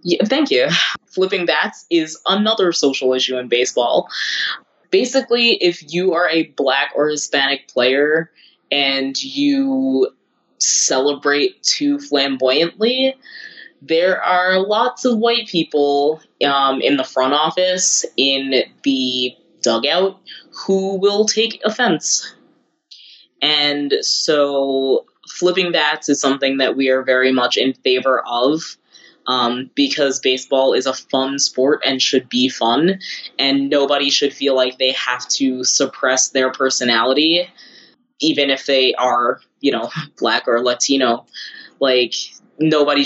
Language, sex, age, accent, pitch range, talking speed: English, female, 20-39, American, 130-180 Hz, 125 wpm